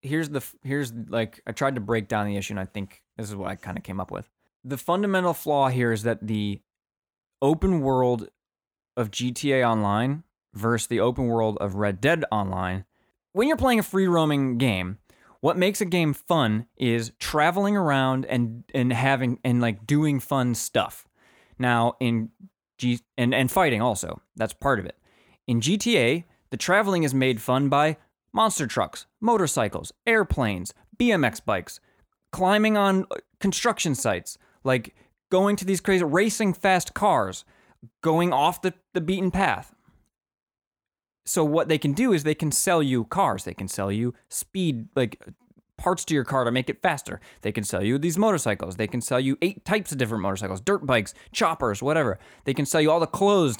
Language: English